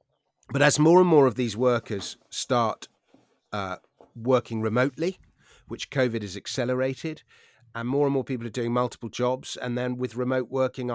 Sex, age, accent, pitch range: male, 30-49, British, 115-140 Hz